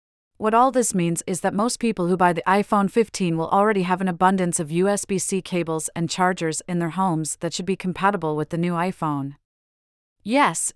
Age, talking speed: 40-59, 200 wpm